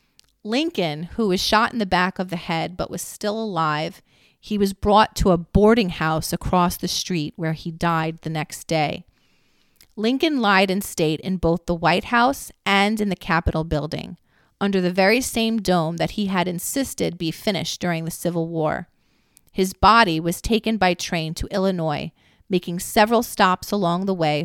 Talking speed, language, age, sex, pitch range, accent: 180 wpm, English, 30-49, female, 165-200 Hz, American